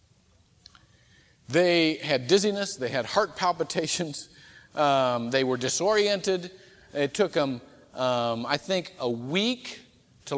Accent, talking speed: American, 115 wpm